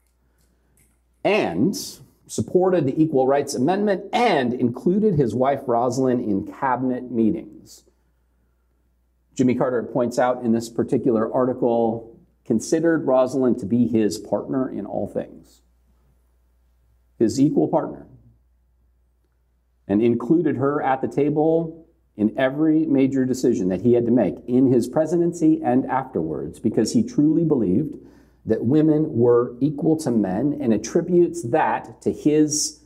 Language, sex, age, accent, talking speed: English, male, 50-69, American, 125 wpm